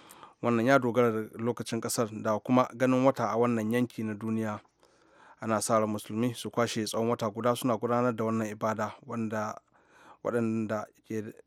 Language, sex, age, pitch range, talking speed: English, male, 30-49, 110-130 Hz, 145 wpm